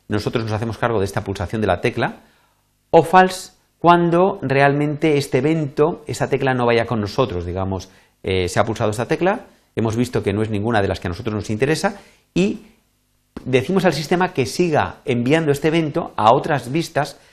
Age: 40-59